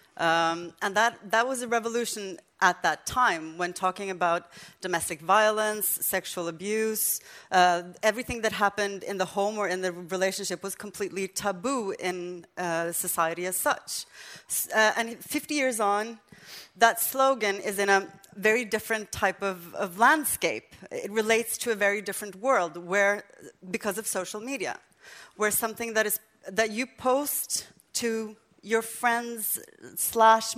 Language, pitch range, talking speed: English, 185-230 Hz, 145 wpm